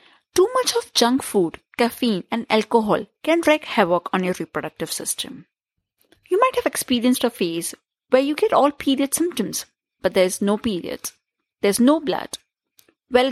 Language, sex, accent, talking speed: English, female, Indian, 160 wpm